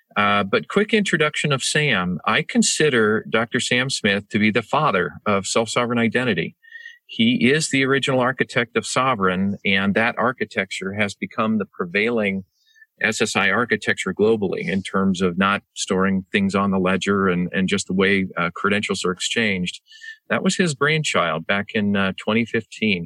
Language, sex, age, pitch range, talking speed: English, male, 40-59, 100-145 Hz, 160 wpm